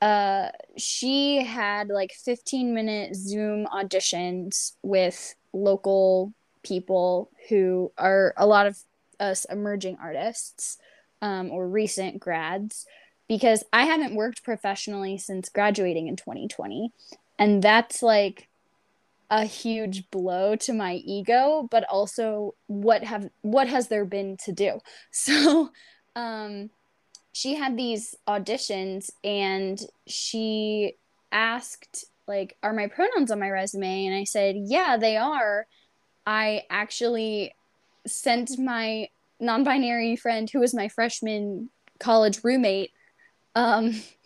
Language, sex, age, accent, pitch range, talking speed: English, female, 10-29, American, 200-245 Hz, 115 wpm